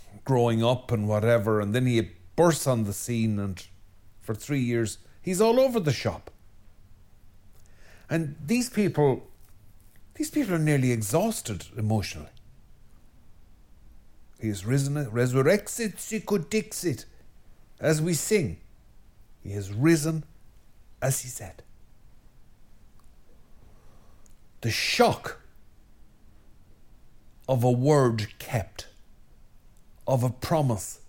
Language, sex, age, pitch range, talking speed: English, male, 60-79, 100-155 Hz, 95 wpm